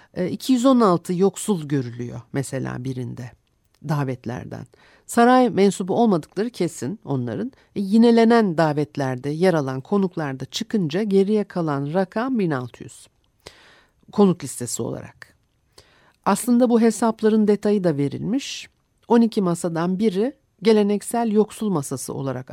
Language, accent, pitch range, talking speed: Turkish, native, 145-225 Hz, 100 wpm